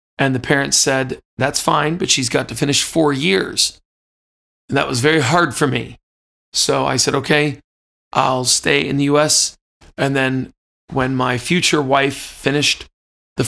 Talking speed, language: 165 wpm, English